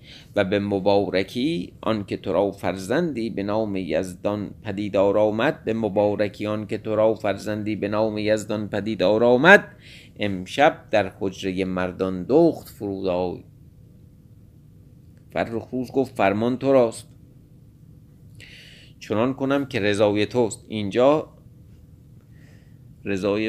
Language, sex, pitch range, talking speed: Persian, male, 100-130 Hz, 100 wpm